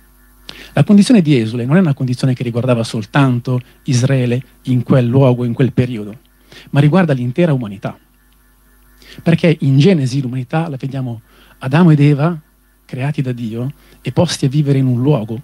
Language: Italian